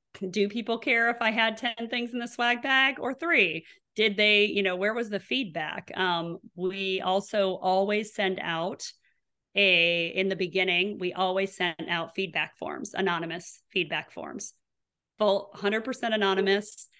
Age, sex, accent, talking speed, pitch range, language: 30-49, female, American, 155 wpm, 180-205 Hz, English